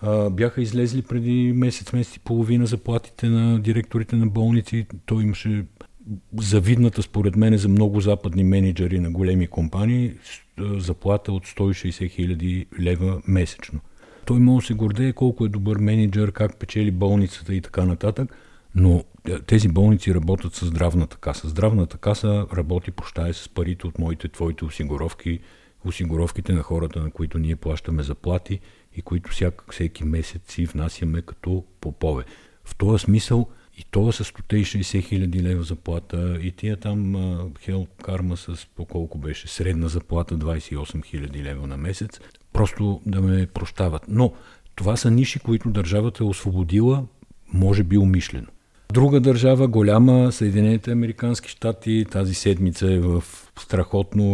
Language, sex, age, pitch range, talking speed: Bulgarian, male, 50-69, 90-110 Hz, 145 wpm